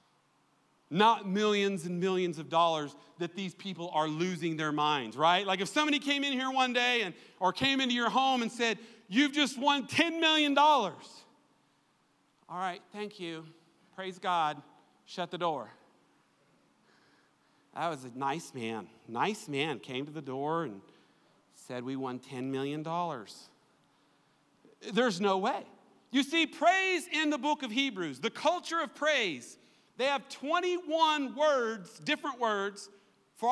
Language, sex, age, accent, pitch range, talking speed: English, male, 40-59, American, 185-290 Hz, 150 wpm